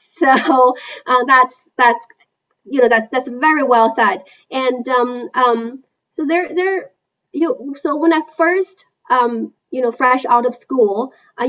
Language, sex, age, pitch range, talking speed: English, female, 20-39, 220-275 Hz, 160 wpm